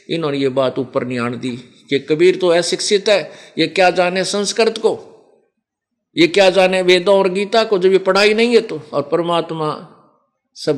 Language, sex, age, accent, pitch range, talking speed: Hindi, male, 50-69, native, 155-205 Hz, 180 wpm